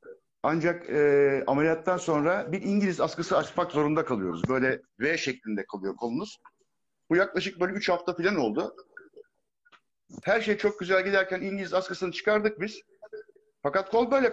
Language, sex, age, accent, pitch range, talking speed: Turkish, male, 60-79, native, 150-230 Hz, 140 wpm